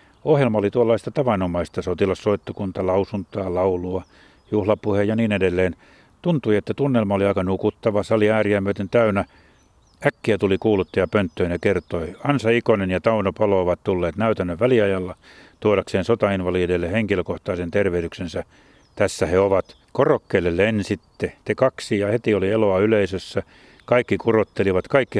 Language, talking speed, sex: Finnish, 130 wpm, male